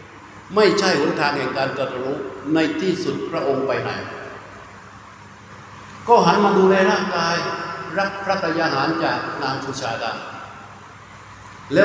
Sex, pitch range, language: male, 155-195 Hz, Thai